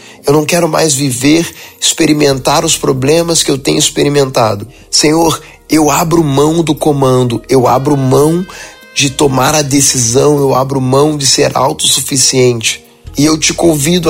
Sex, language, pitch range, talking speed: male, Portuguese, 135-155 Hz, 150 wpm